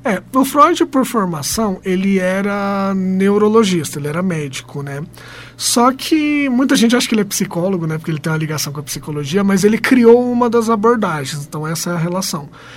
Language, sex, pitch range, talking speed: Portuguese, male, 175-235 Hz, 195 wpm